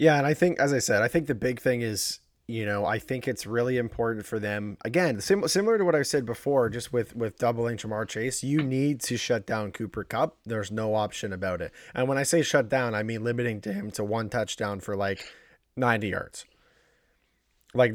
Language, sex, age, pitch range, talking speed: English, male, 30-49, 110-145 Hz, 220 wpm